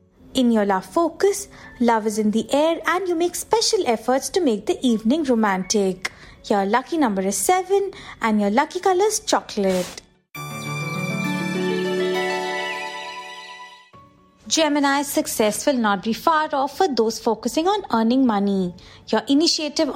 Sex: female